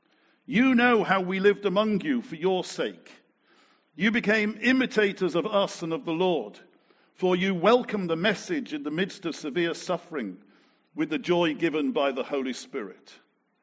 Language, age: English, 50-69